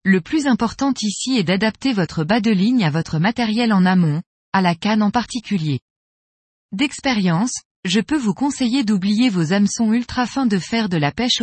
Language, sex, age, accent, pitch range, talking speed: French, female, 20-39, French, 185-245 Hz, 185 wpm